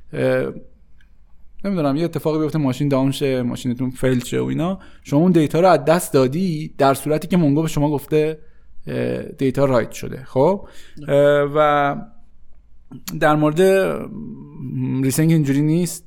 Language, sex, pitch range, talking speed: Persian, male, 130-155 Hz, 145 wpm